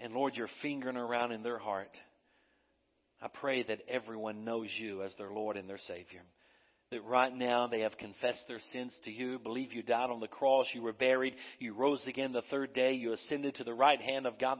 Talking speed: 220 wpm